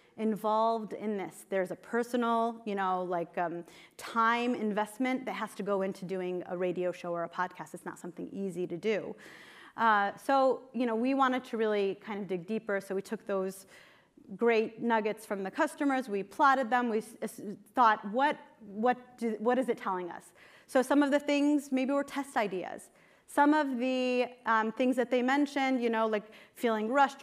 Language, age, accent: English, 30-49, American